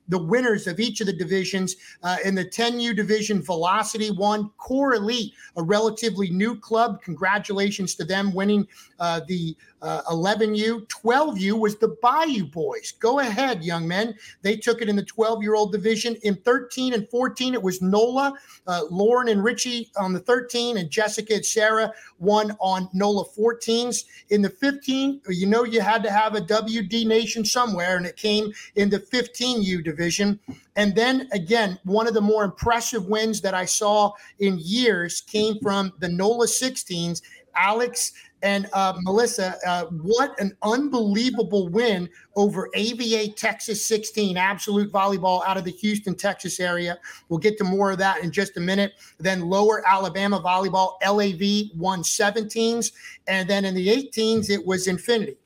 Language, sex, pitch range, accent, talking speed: English, male, 190-230 Hz, American, 165 wpm